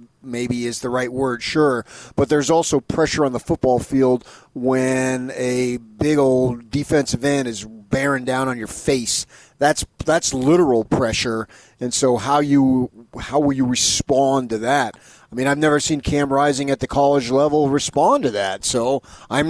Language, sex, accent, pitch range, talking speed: English, male, American, 120-145 Hz, 170 wpm